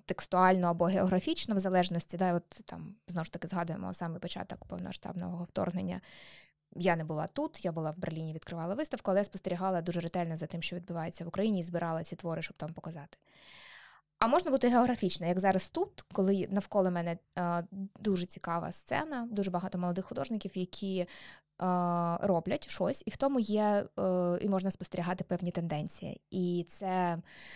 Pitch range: 175-205 Hz